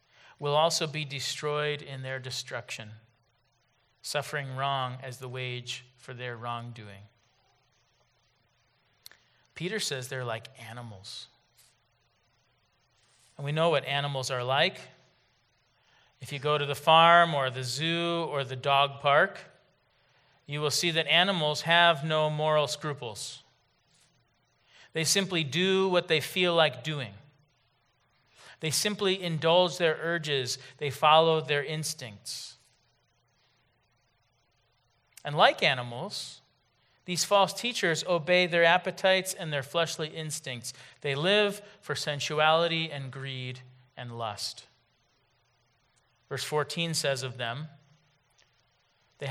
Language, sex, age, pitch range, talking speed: English, male, 40-59, 120-155 Hz, 115 wpm